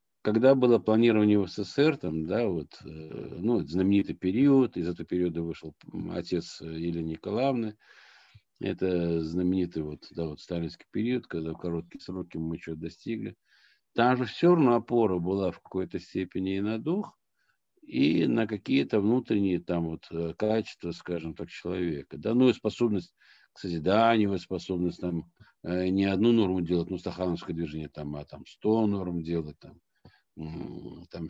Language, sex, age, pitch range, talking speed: Russian, male, 50-69, 90-120 Hz, 130 wpm